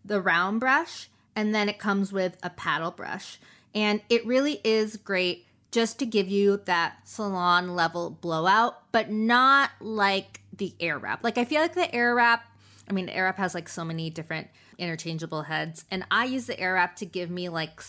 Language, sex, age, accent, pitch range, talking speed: English, female, 20-39, American, 170-210 Hz, 200 wpm